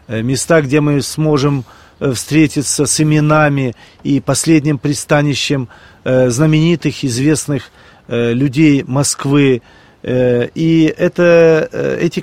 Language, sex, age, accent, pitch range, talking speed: Russian, male, 40-59, native, 130-175 Hz, 80 wpm